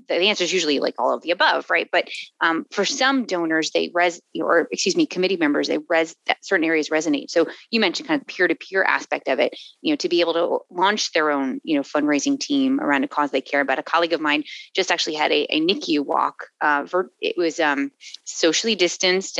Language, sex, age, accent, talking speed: English, female, 30-49, American, 235 wpm